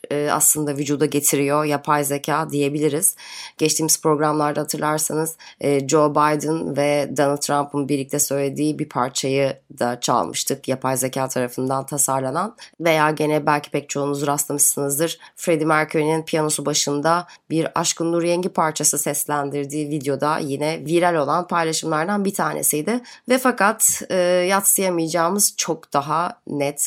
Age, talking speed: 20-39, 120 wpm